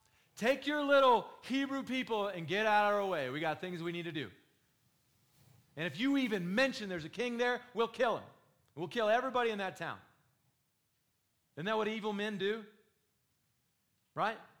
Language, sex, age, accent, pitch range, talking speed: English, male, 40-59, American, 120-165 Hz, 175 wpm